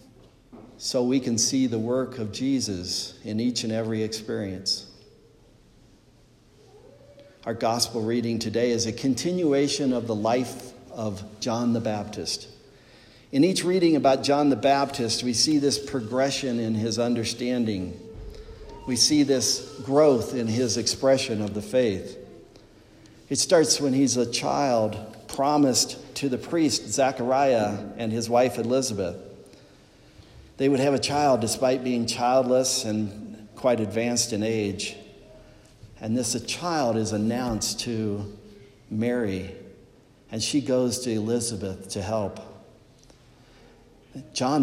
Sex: male